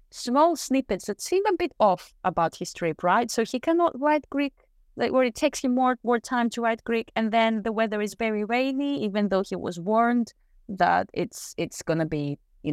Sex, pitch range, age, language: female, 170-230 Hz, 20-39, English